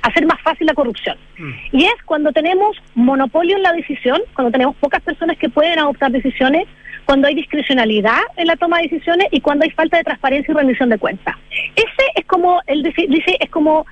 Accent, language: American, Spanish